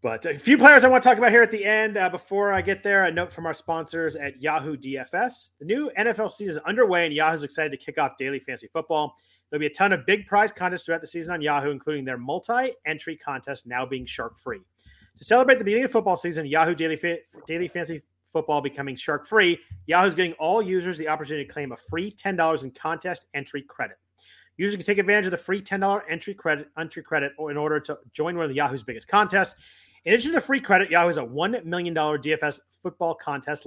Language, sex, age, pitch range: English, male, 30-49, 145-195 Hz